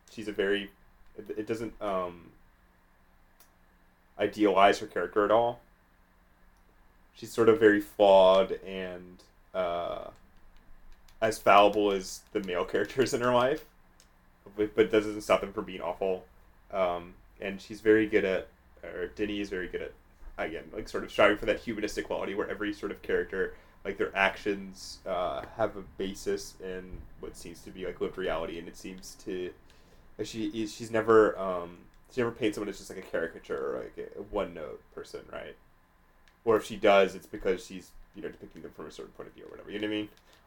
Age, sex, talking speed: 30-49, male, 185 wpm